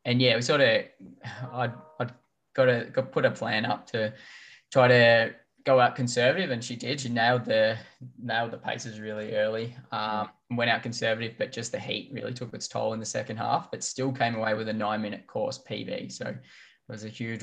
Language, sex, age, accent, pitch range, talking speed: English, male, 10-29, Australian, 110-130 Hz, 210 wpm